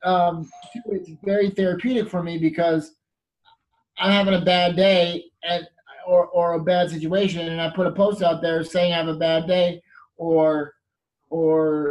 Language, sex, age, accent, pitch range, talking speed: English, male, 30-49, American, 155-180 Hz, 165 wpm